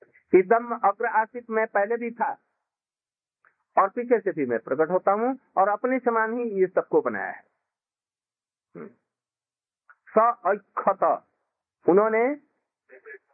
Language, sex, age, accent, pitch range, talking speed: Hindi, male, 50-69, native, 185-235 Hz, 110 wpm